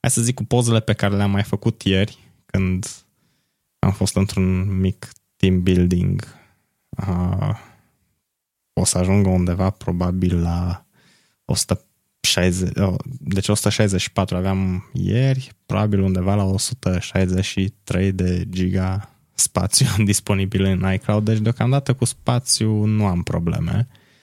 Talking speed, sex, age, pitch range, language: 120 wpm, male, 20-39, 90-115 Hz, Romanian